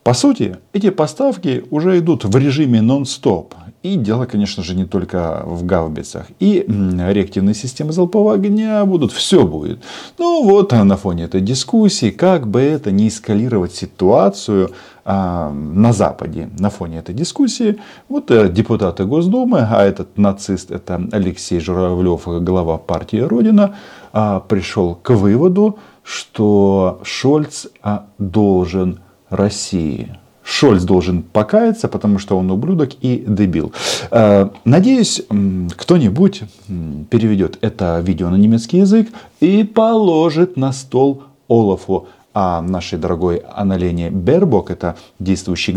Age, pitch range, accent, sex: 50-69, 95-145 Hz, native, male